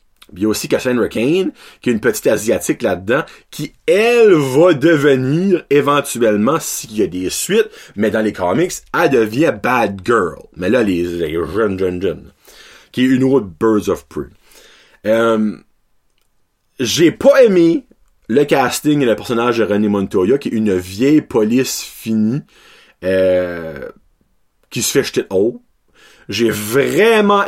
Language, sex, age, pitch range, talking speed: French, male, 30-49, 100-155 Hz, 145 wpm